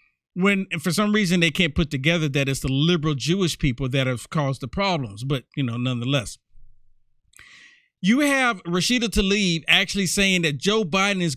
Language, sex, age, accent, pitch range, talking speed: English, male, 50-69, American, 155-195 Hz, 175 wpm